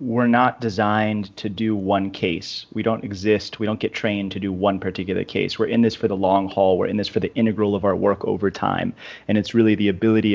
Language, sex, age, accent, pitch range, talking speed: English, male, 30-49, American, 100-115 Hz, 245 wpm